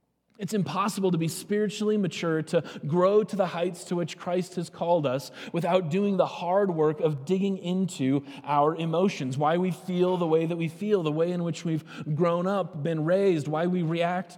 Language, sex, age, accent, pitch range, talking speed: English, male, 20-39, American, 145-180 Hz, 195 wpm